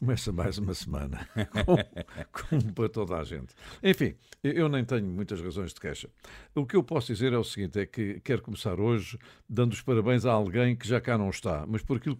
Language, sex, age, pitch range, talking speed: Portuguese, male, 60-79, 100-130 Hz, 210 wpm